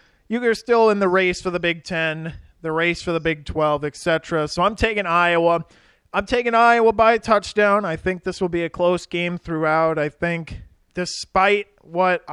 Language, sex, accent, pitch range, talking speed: English, male, American, 150-185 Hz, 195 wpm